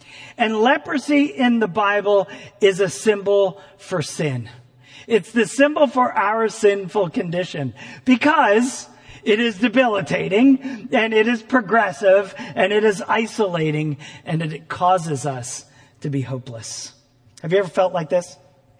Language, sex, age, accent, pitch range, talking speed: English, male, 40-59, American, 140-230 Hz, 135 wpm